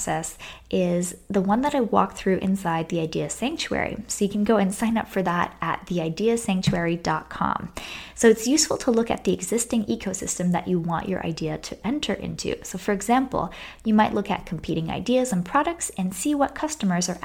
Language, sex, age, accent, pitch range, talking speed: English, female, 10-29, American, 180-235 Hz, 195 wpm